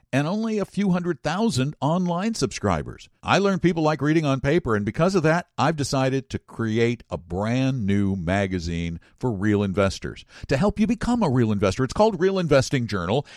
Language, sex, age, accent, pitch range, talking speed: English, male, 60-79, American, 105-150 Hz, 190 wpm